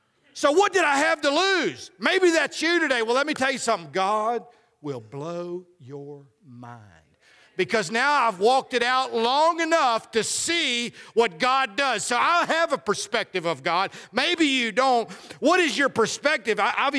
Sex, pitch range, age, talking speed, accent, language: male, 165-240 Hz, 50-69, 175 wpm, American, English